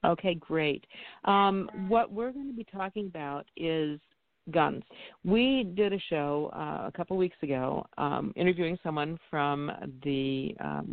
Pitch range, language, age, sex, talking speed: 140-185 Hz, English, 50-69, female, 150 wpm